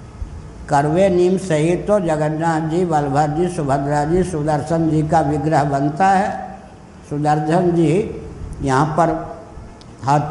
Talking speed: 120 wpm